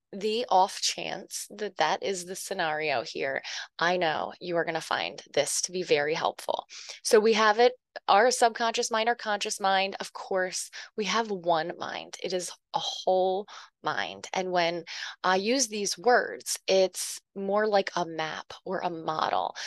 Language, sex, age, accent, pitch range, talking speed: English, female, 20-39, American, 180-215 Hz, 170 wpm